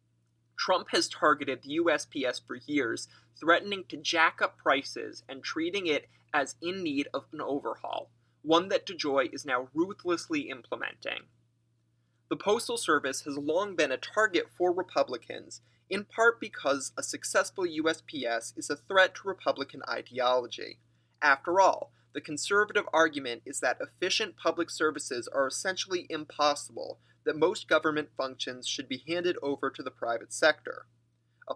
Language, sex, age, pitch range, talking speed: English, male, 30-49, 135-190 Hz, 145 wpm